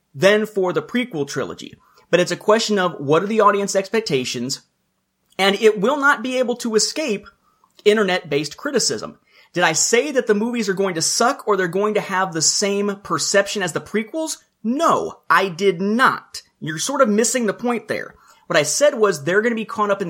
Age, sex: 30-49, male